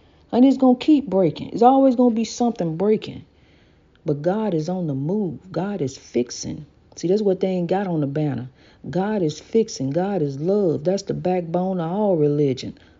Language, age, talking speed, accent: English, 50-69, 200 wpm, American